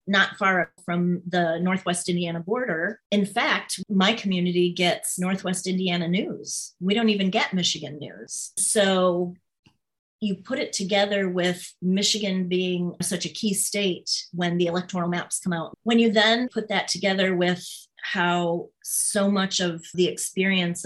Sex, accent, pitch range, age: female, American, 170-200 Hz, 30-49